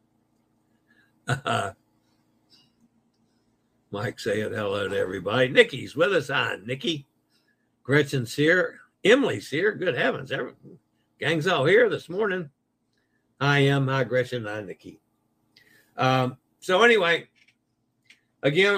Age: 60-79